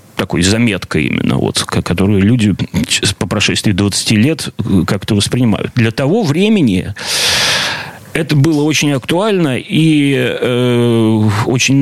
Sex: male